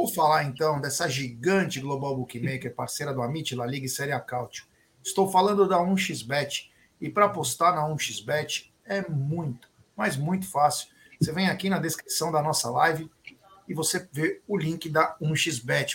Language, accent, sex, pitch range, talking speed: Portuguese, Brazilian, male, 150-200 Hz, 165 wpm